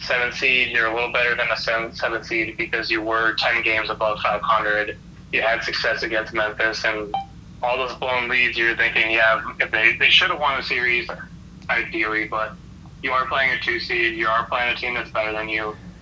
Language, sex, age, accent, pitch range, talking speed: English, male, 20-39, American, 110-120 Hz, 210 wpm